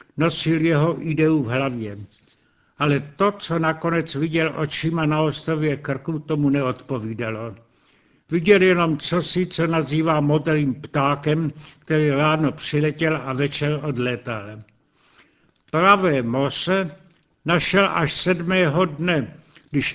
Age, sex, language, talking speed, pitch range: 70-89, male, Czech, 110 wpm, 140-170 Hz